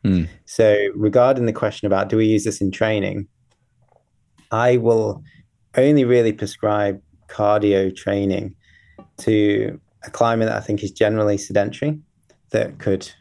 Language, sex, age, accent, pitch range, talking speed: English, male, 20-39, British, 95-110 Hz, 130 wpm